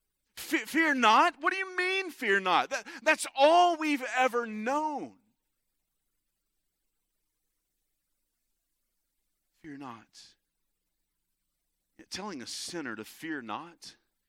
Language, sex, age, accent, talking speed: English, male, 40-59, American, 90 wpm